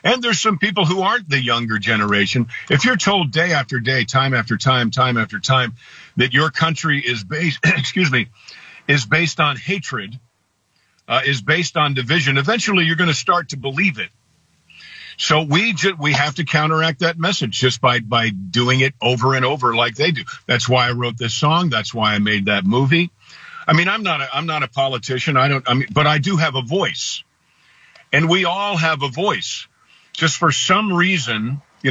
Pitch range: 125-165 Hz